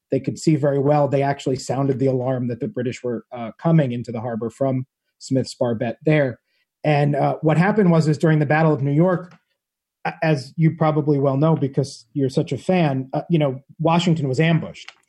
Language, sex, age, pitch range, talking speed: English, male, 40-59, 135-165 Hz, 205 wpm